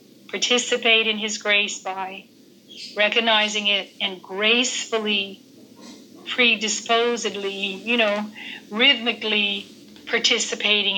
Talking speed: 75 wpm